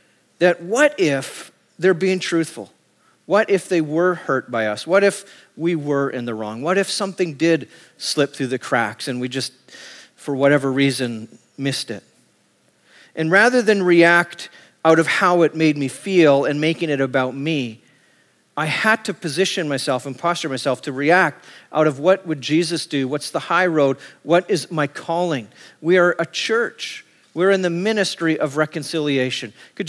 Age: 40-59